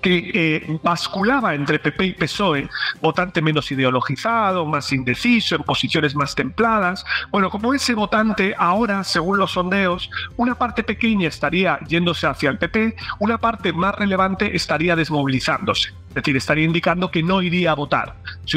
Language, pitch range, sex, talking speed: Spanish, 150-200 Hz, male, 155 wpm